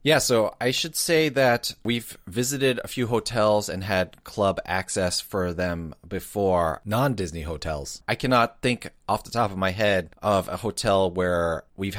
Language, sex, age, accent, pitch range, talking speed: English, male, 30-49, American, 90-105 Hz, 170 wpm